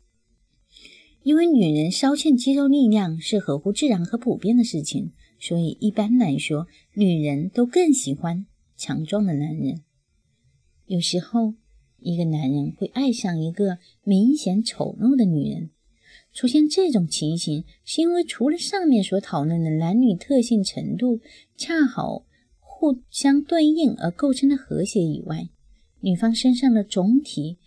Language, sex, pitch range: Chinese, female, 160-245 Hz